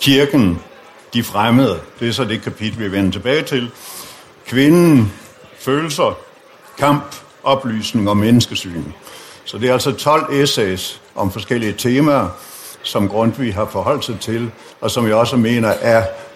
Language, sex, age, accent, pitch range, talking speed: Danish, male, 60-79, native, 110-140 Hz, 145 wpm